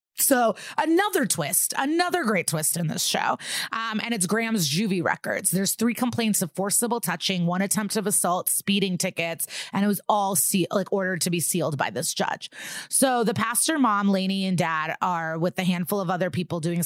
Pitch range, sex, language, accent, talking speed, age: 170-210 Hz, female, English, American, 195 wpm, 30-49